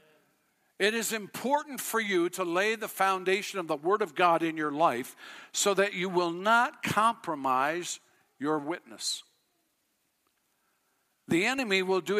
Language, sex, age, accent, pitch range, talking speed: English, male, 60-79, American, 145-195 Hz, 145 wpm